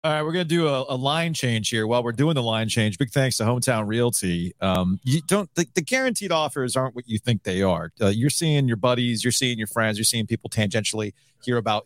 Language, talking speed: English, 255 wpm